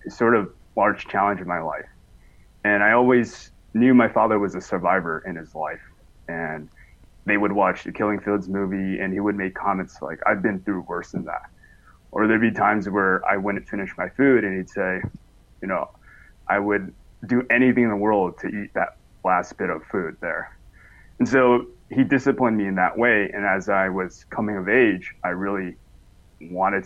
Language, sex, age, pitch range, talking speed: English, male, 20-39, 95-115 Hz, 195 wpm